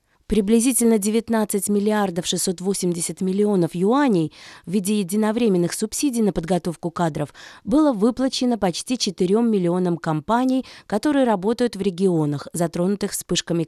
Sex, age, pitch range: female, 20-39, 175-230 Hz